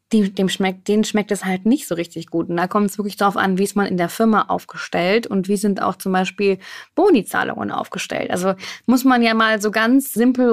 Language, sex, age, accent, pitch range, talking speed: German, female, 20-39, German, 190-230 Hz, 235 wpm